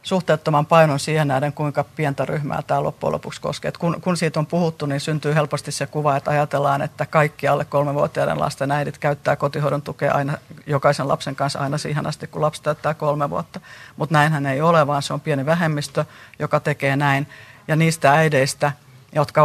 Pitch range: 140-155 Hz